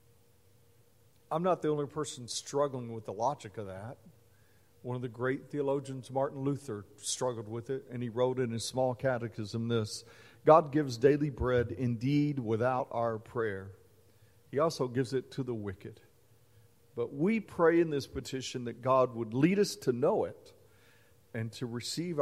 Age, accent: 50-69, American